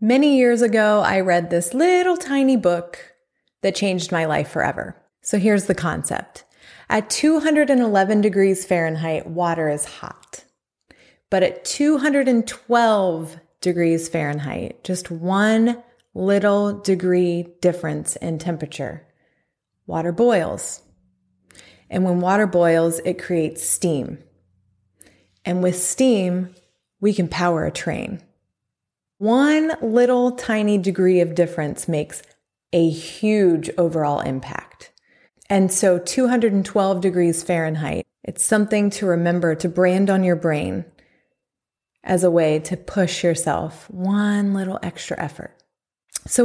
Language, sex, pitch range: English, female, 170-215 Hz